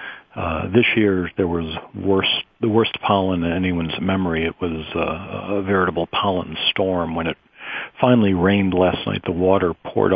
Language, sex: English, male